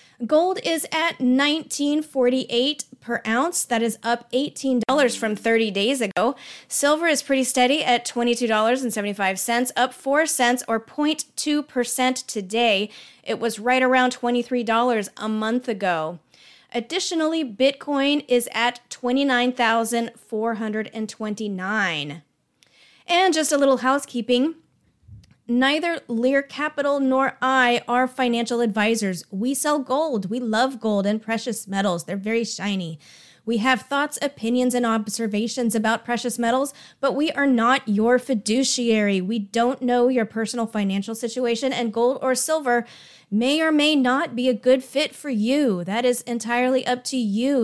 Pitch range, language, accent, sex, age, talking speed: 225-270 Hz, English, American, female, 20-39, 135 wpm